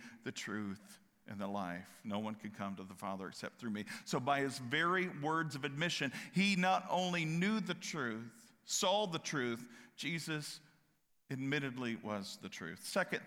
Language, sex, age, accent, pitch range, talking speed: English, male, 50-69, American, 135-175 Hz, 165 wpm